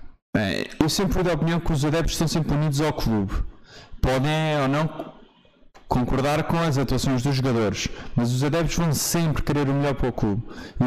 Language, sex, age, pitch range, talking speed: Portuguese, male, 20-39, 115-165 Hz, 180 wpm